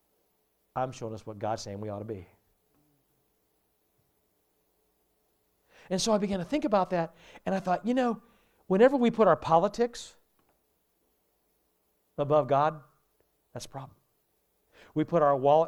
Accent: American